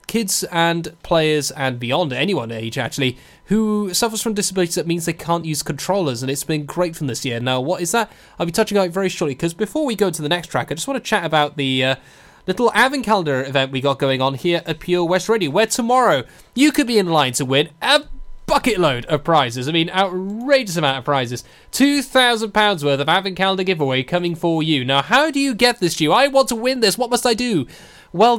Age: 10-29